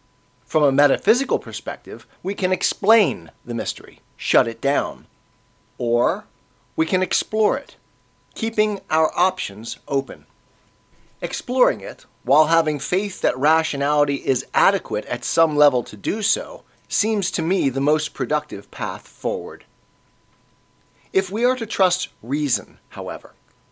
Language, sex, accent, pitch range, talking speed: English, male, American, 130-180 Hz, 130 wpm